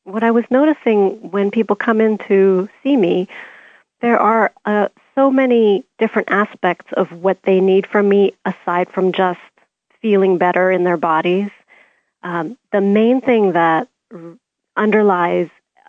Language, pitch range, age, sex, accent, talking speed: English, 185-220 Hz, 40-59, female, American, 145 wpm